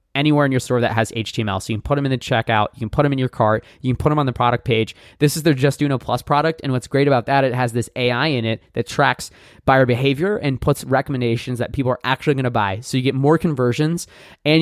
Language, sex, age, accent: English, male, 20-39, American